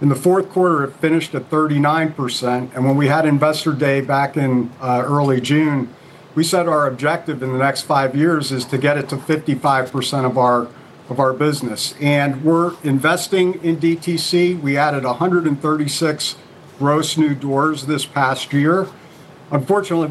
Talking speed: 160 wpm